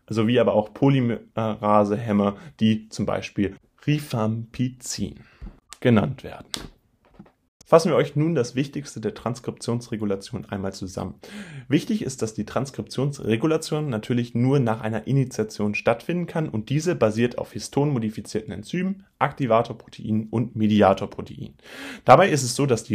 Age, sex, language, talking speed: 30-49, male, German, 125 wpm